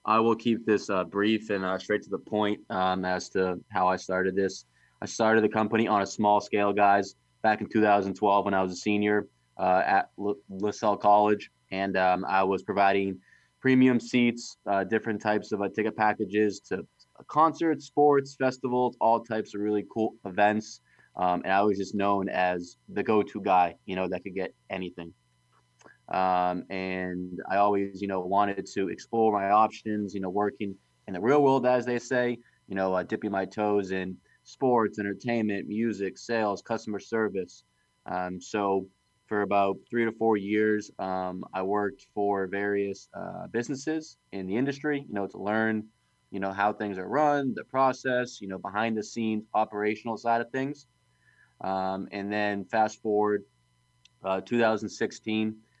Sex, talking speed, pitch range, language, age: male, 170 wpm, 95-115 Hz, English, 20-39